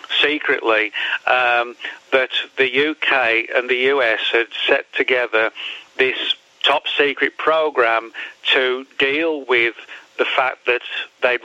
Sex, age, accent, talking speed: male, 50-69, British, 110 wpm